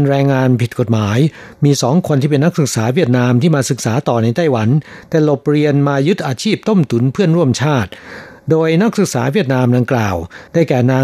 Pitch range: 125-145 Hz